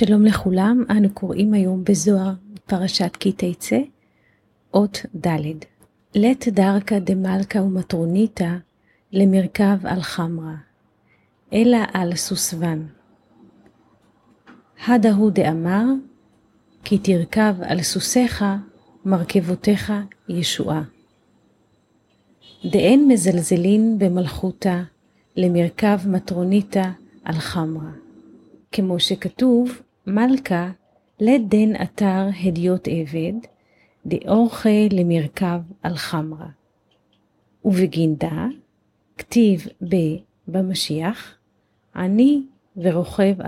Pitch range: 170-210 Hz